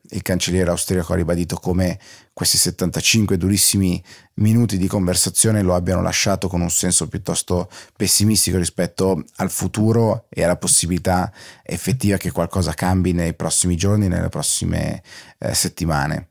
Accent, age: native, 30-49